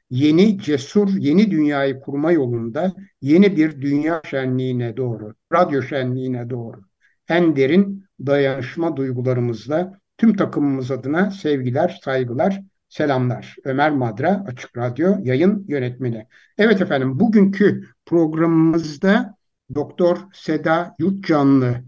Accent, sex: native, male